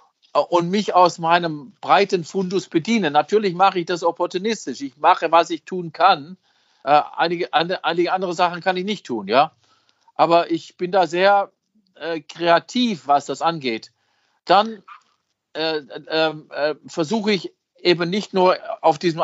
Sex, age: male, 50-69